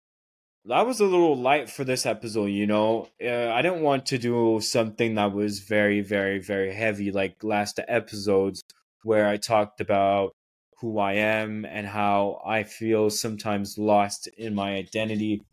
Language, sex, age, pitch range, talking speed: English, male, 20-39, 100-115 Hz, 160 wpm